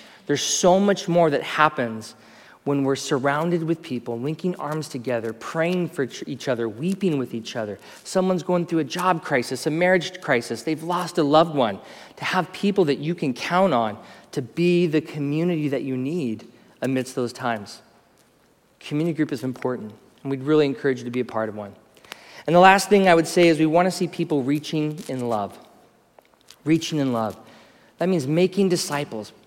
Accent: American